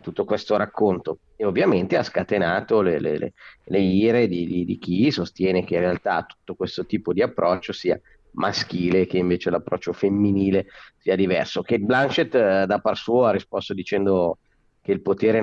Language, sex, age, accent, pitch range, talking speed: Italian, male, 30-49, native, 95-125 Hz, 170 wpm